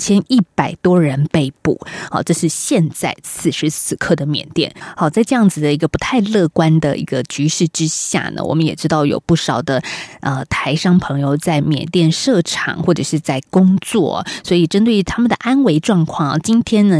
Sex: female